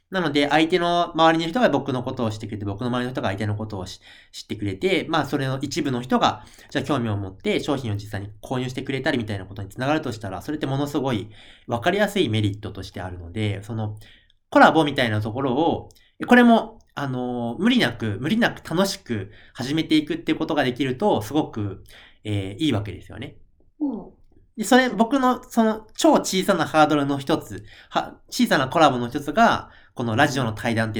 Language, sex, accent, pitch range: Japanese, male, native, 105-160 Hz